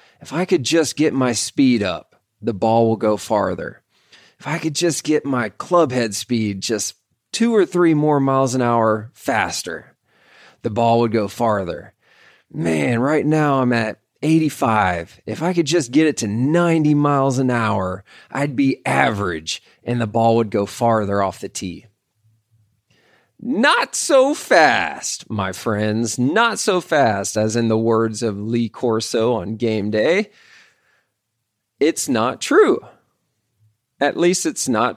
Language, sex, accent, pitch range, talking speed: English, male, American, 110-160 Hz, 155 wpm